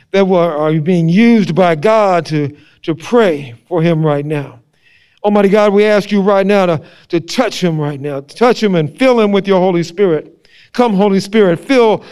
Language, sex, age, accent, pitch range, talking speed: English, male, 50-69, American, 175-245 Hz, 200 wpm